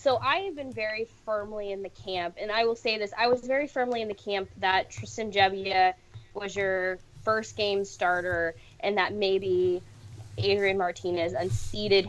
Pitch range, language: 180-225 Hz, English